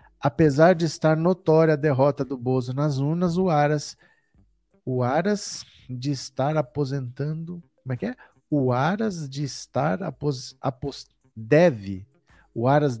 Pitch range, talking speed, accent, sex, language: 125-150 Hz, 140 wpm, Brazilian, male, Portuguese